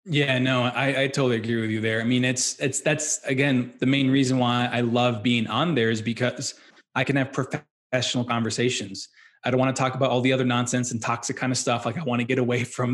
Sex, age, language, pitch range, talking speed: male, 20-39, English, 120-140 Hz, 240 wpm